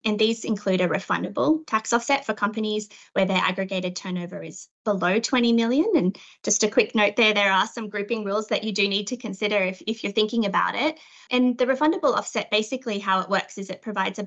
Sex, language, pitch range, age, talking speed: female, English, 190-235 Hz, 20-39, 215 wpm